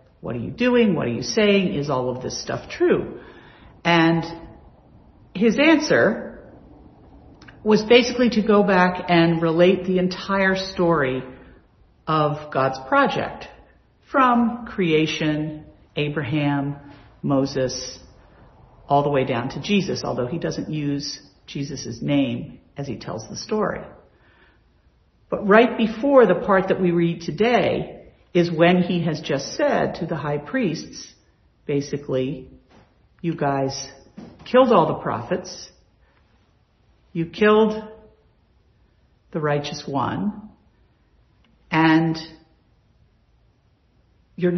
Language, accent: English, American